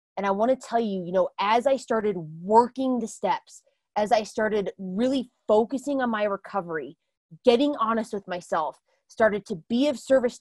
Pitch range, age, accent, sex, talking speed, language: 200-240 Hz, 20-39, American, female, 180 wpm, English